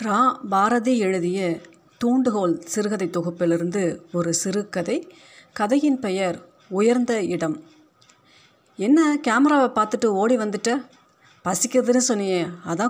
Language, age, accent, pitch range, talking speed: Tamil, 30-49, native, 180-245 Hz, 90 wpm